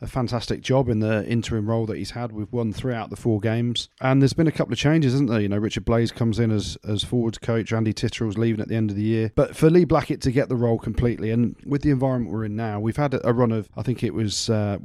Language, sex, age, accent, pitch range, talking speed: English, male, 30-49, British, 105-120 Hz, 295 wpm